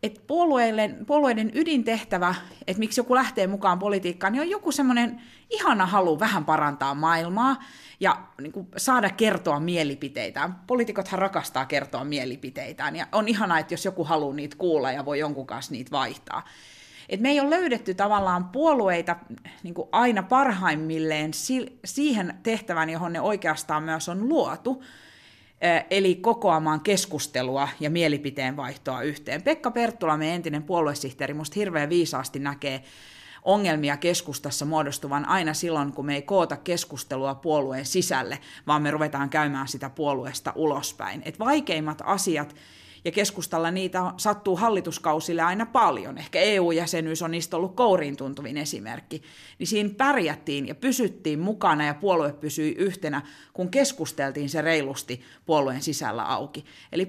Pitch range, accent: 150-210 Hz, native